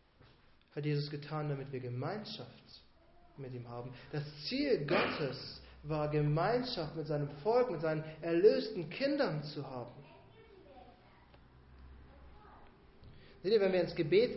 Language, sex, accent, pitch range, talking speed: German, male, German, 150-225 Hz, 120 wpm